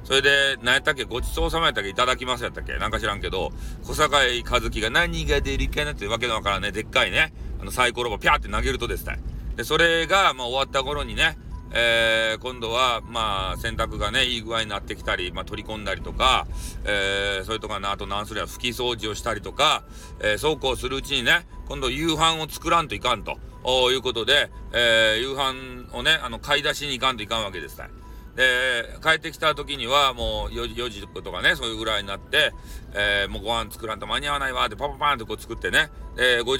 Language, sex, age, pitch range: Japanese, male, 40-59, 105-130 Hz